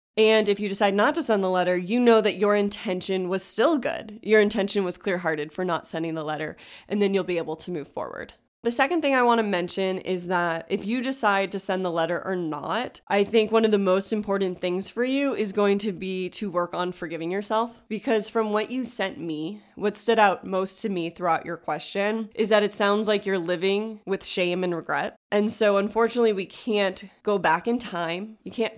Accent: American